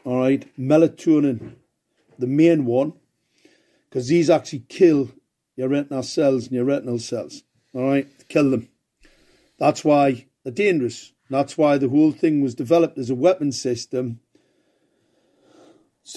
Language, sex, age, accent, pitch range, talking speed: English, male, 50-69, British, 130-170 Hz, 130 wpm